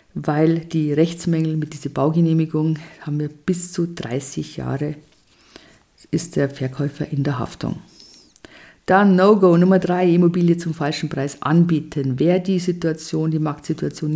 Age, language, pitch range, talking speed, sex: 50-69, German, 145-170 Hz, 140 wpm, female